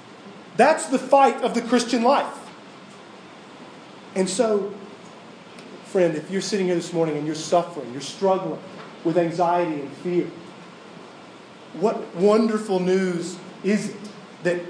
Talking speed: 125 wpm